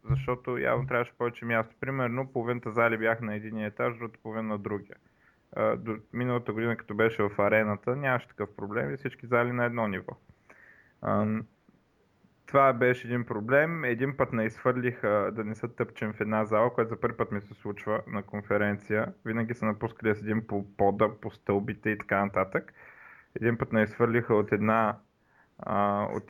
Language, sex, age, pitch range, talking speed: Bulgarian, male, 20-39, 105-120 Hz, 170 wpm